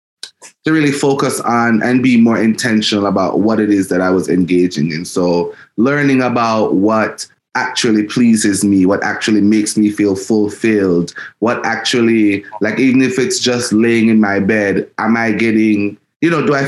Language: English